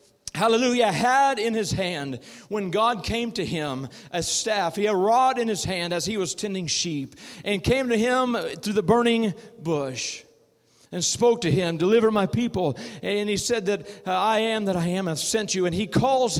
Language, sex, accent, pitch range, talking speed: English, male, American, 180-225 Hz, 200 wpm